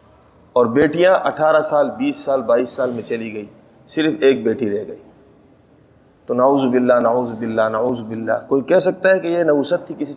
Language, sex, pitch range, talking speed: Urdu, male, 130-160 Hz, 190 wpm